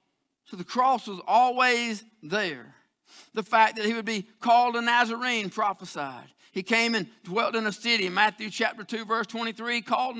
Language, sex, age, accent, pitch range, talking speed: English, male, 50-69, American, 170-225 Hz, 170 wpm